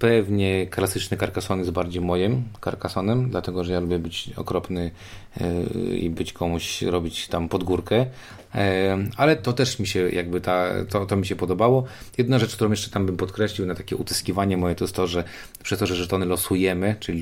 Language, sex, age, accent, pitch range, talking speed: Polish, male, 30-49, native, 85-105 Hz, 180 wpm